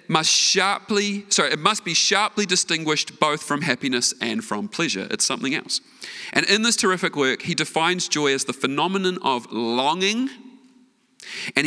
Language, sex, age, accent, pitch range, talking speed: English, male, 40-59, Australian, 150-195 Hz, 160 wpm